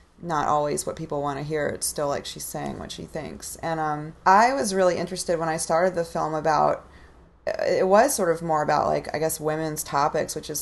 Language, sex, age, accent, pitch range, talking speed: English, female, 30-49, American, 145-165 Hz, 225 wpm